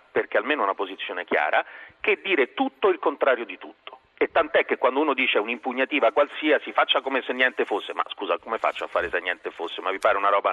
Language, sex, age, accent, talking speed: Italian, male, 40-59, native, 230 wpm